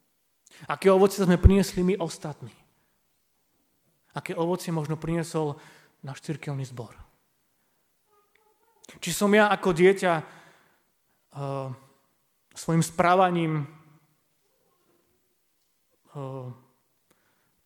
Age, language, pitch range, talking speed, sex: 30-49, Slovak, 145-185 Hz, 75 wpm, male